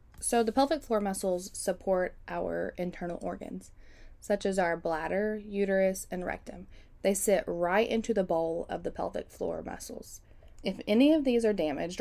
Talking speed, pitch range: 165 wpm, 175-230 Hz